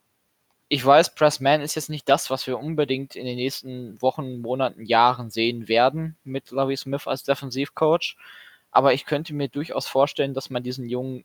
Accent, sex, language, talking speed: German, male, German, 175 wpm